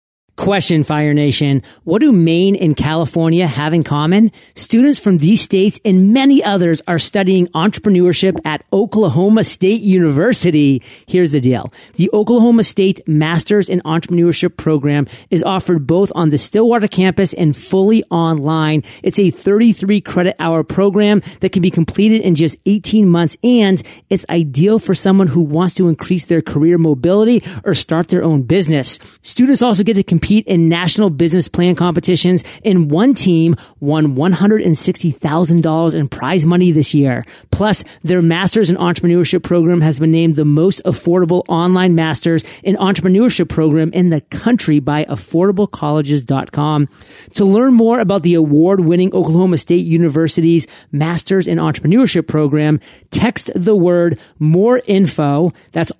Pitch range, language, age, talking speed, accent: 155-195 Hz, English, 30-49, 150 wpm, American